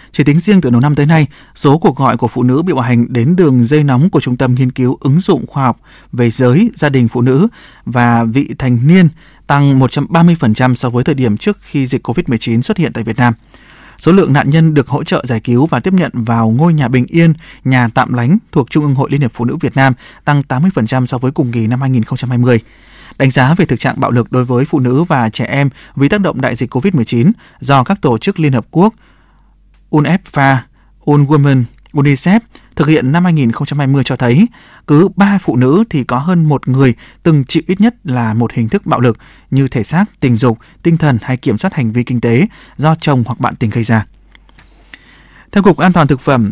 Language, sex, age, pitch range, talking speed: Vietnamese, male, 20-39, 125-160 Hz, 225 wpm